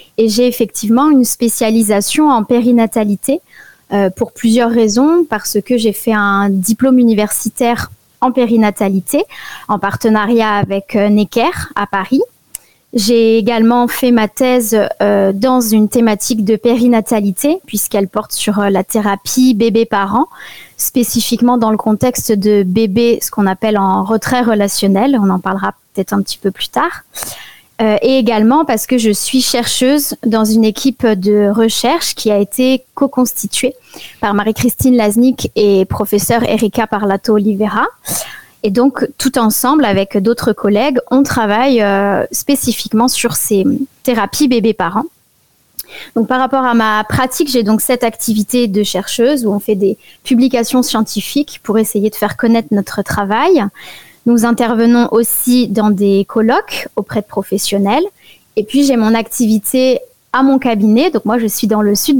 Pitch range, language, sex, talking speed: 210-250 Hz, French, female, 150 wpm